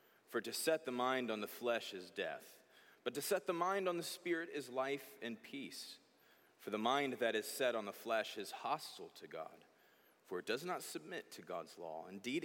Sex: male